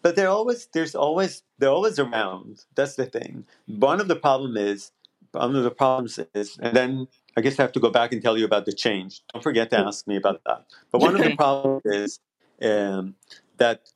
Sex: male